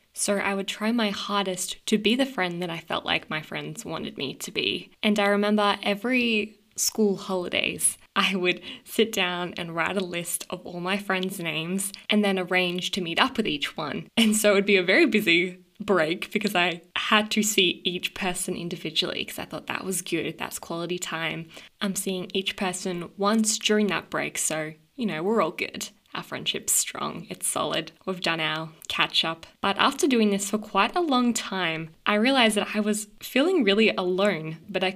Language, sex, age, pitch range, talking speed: English, female, 10-29, 170-210 Hz, 200 wpm